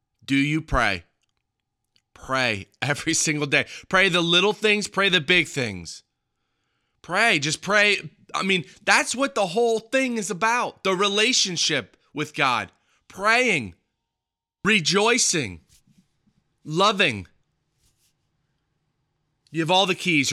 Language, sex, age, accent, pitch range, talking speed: English, male, 20-39, American, 135-180 Hz, 115 wpm